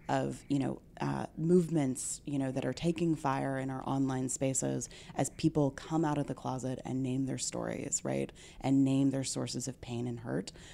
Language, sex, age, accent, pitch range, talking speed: English, female, 30-49, American, 130-150 Hz, 195 wpm